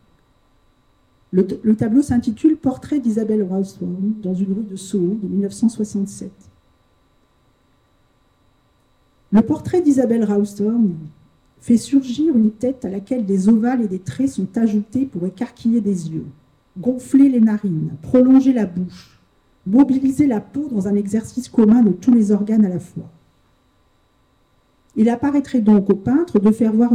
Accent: French